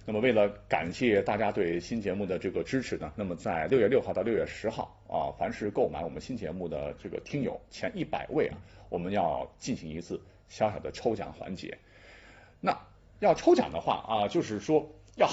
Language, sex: Chinese, male